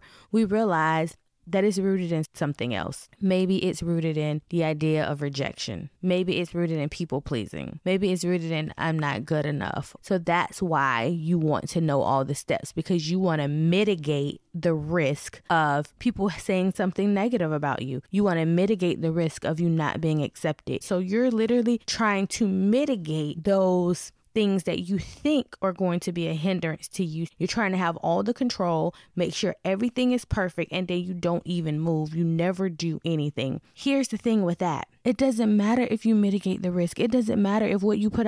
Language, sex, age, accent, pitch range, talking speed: English, female, 20-39, American, 165-205 Hz, 200 wpm